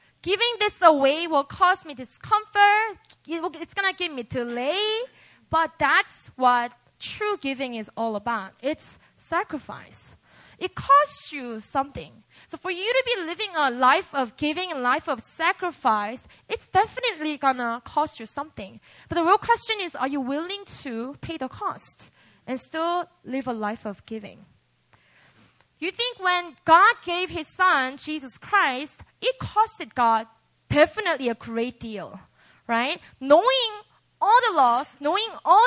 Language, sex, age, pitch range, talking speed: English, female, 20-39, 260-380 Hz, 150 wpm